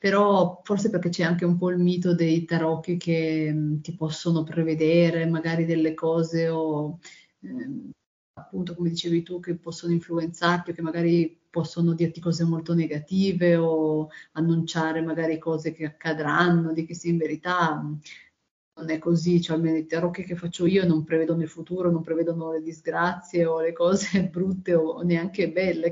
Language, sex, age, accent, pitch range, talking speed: Italian, female, 30-49, native, 160-175 Hz, 170 wpm